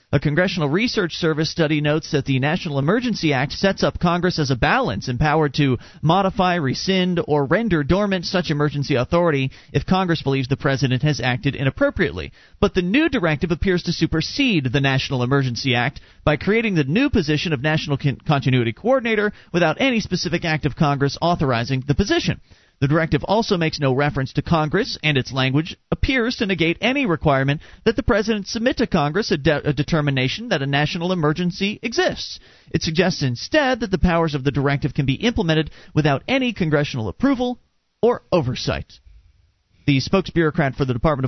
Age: 40-59